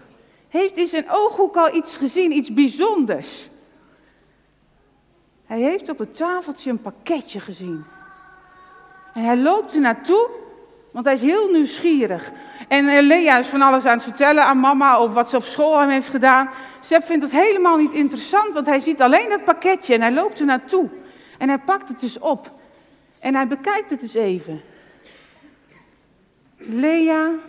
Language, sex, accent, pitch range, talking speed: Dutch, female, Dutch, 255-360 Hz, 165 wpm